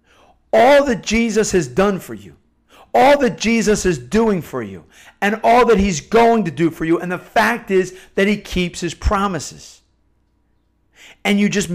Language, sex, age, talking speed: English, male, 50-69, 180 wpm